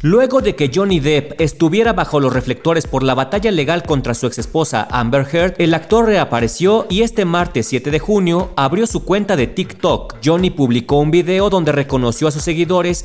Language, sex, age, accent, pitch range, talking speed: Spanish, male, 40-59, Mexican, 140-195 Hz, 190 wpm